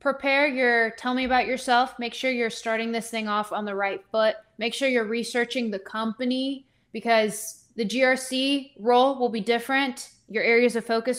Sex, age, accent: female, 20-39, American